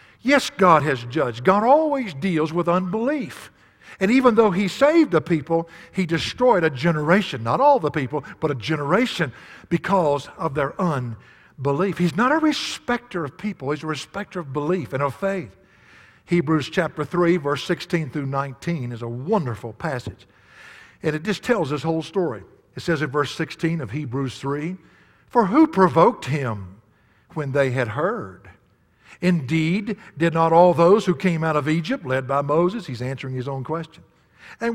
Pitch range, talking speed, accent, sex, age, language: 140-190 Hz, 170 wpm, American, male, 60-79, English